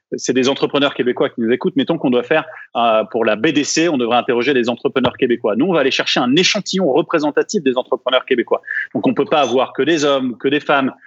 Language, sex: French, male